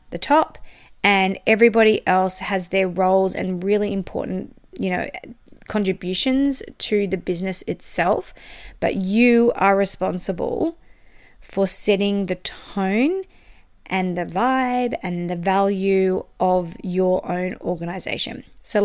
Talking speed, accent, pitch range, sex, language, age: 120 wpm, Australian, 190-245 Hz, female, English, 20-39